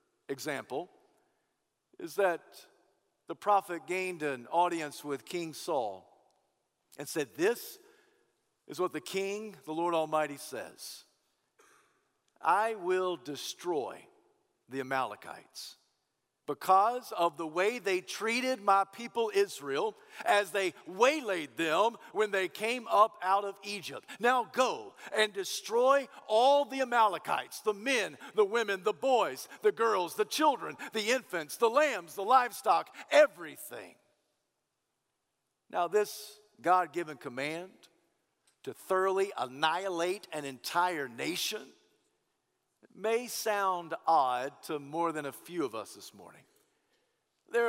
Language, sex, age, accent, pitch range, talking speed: English, male, 50-69, American, 180-275 Hz, 120 wpm